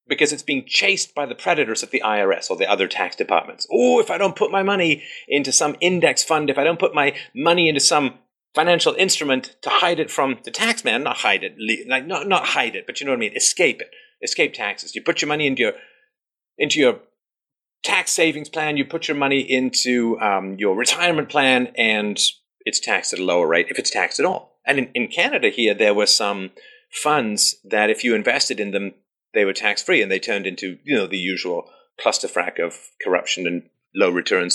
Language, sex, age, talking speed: English, male, 40-59, 215 wpm